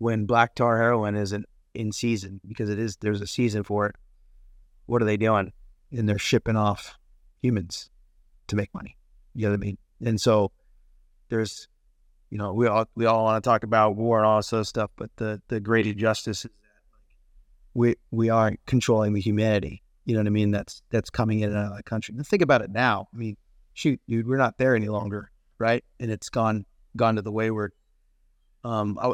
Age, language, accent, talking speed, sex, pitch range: 30-49, English, American, 205 wpm, male, 105-115 Hz